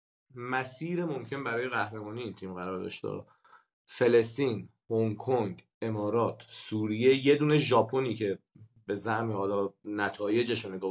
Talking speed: 130 wpm